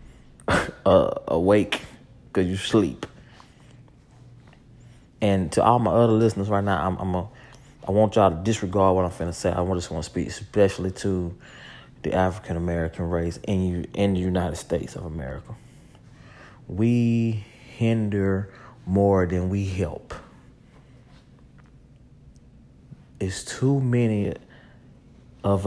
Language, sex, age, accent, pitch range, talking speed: English, male, 30-49, American, 90-110 Hz, 125 wpm